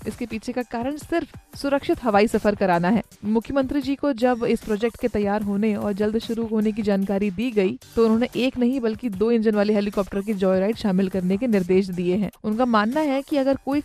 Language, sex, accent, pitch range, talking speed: Hindi, female, native, 210-255 Hz, 220 wpm